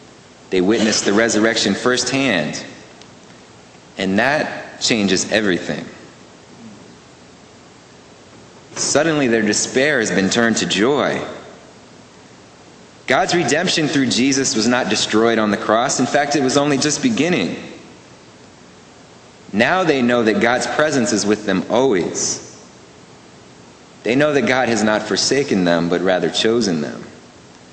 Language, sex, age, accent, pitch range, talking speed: English, male, 30-49, American, 90-125 Hz, 120 wpm